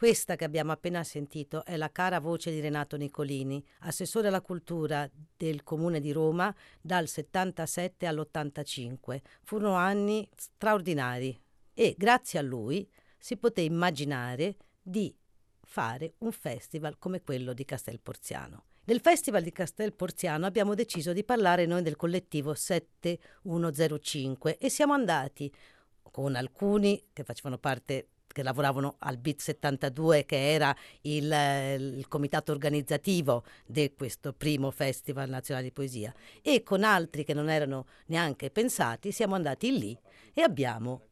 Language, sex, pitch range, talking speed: Italian, female, 135-185 Hz, 135 wpm